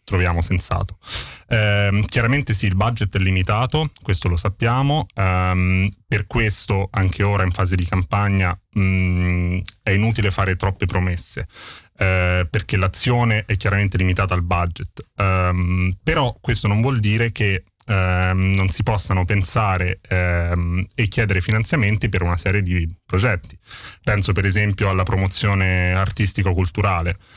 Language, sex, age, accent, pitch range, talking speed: Dutch, male, 30-49, Italian, 90-110 Hz, 120 wpm